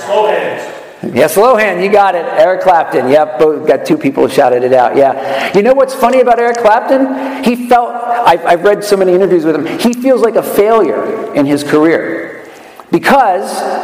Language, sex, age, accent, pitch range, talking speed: English, male, 50-69, American, 160-225 Hz, 180 wpm